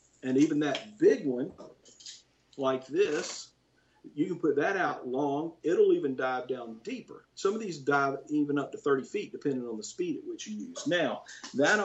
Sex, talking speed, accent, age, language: male, 185 wpm, American, 50-69, English